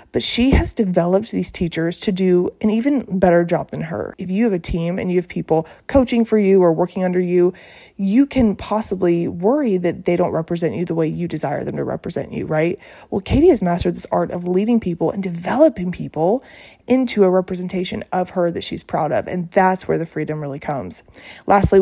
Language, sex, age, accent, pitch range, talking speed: English, female, 20-39, American, 170-195 Hz, 210 wpm